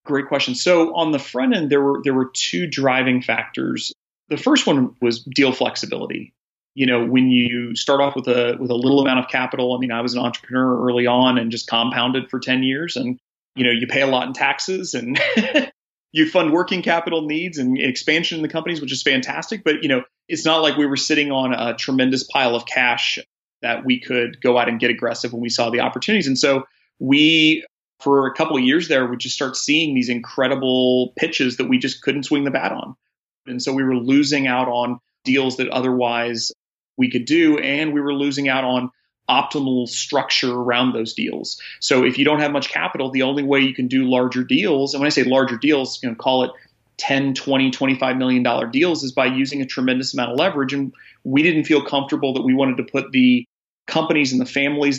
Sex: male